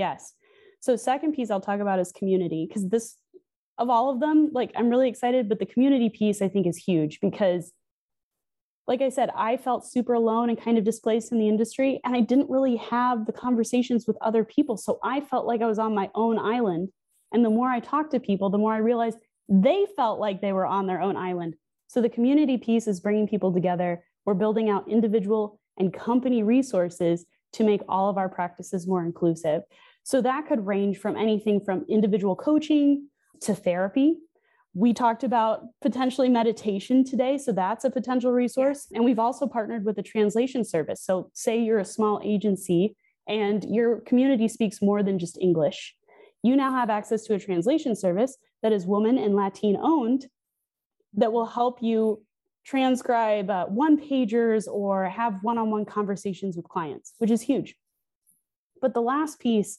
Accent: American